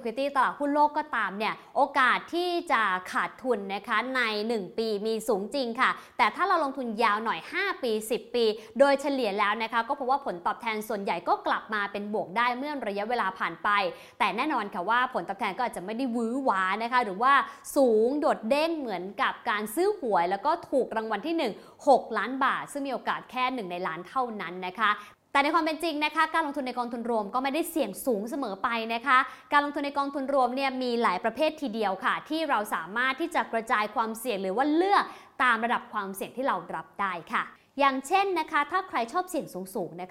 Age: 20-39